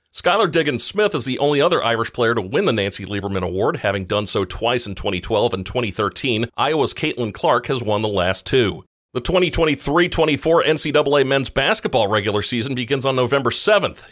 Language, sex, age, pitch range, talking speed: English, male, 40-59, 105-135 Hz, 175 wpm